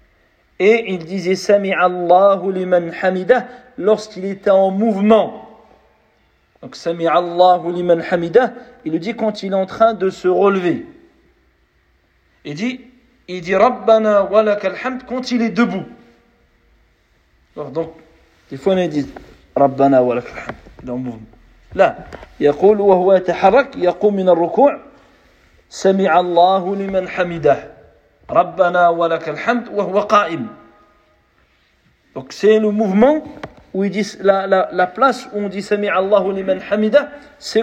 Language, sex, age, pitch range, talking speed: French, male, 50-69, 170-225 Hz, 135 wpm